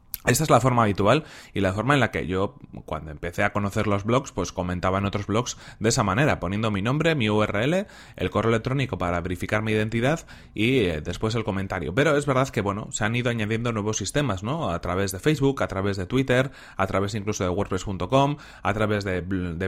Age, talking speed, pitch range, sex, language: 30-49, 220 wpm, 100-125 Hz, male, Spanish